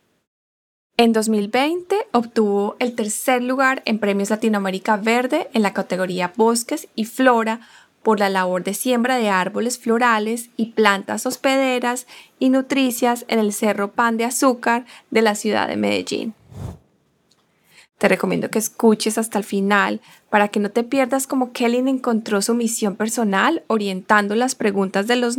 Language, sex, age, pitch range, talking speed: English, female, 10-29, 200-245 Hz, 150 wpm